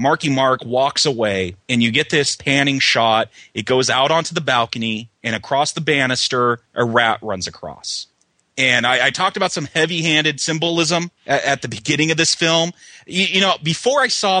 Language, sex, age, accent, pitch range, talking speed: English, male, 30-49, American, 125-170 Hz, 190 wpm